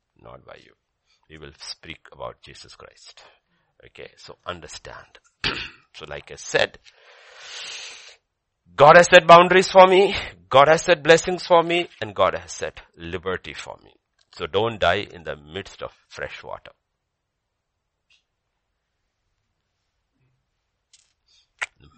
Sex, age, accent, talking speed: male, 60-79, Indian, 125 wpm